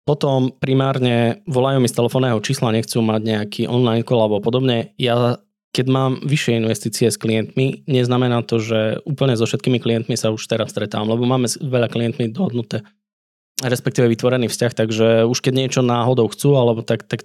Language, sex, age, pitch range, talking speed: Slovak, male, 20-39, 110-130 Hz, 170 wpm